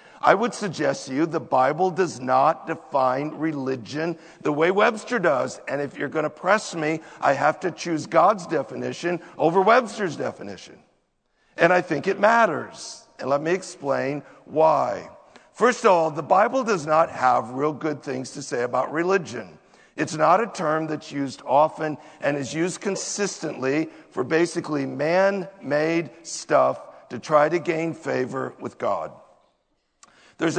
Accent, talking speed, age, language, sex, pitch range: American, 155 wpm, 50-69, English, male, 145-185 Hz